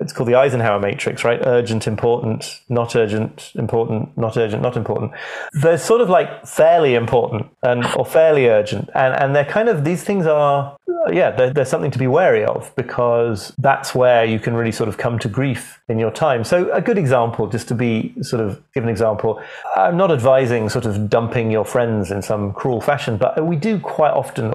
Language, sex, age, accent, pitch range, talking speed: English, male, 30-49, British, 115-145 Hz, 205 wpm